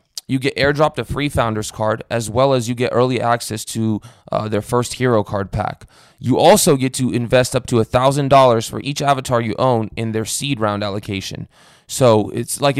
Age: 20-39